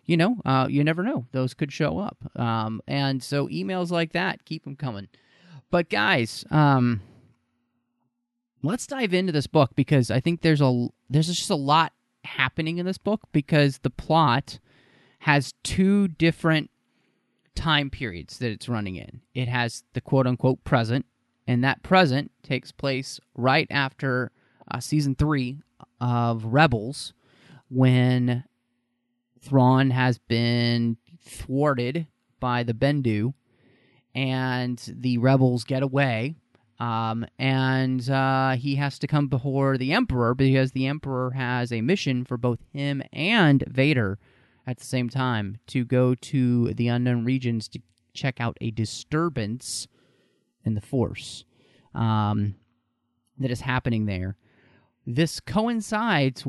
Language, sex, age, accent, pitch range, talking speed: English, male, 30-49, American, 120-145 Hz, 135 wpm